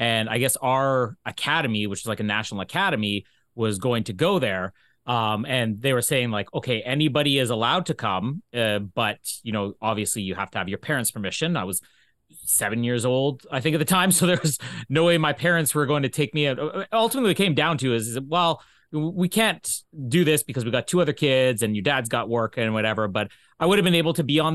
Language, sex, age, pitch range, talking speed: English, male, 30-49, 115-155 Hz, 230 wpm